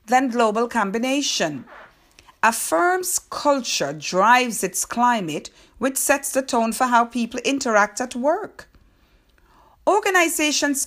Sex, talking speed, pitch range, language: female, 110 wpm, 195-270 Hz, English